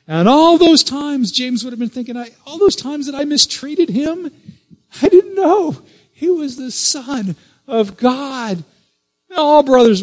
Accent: American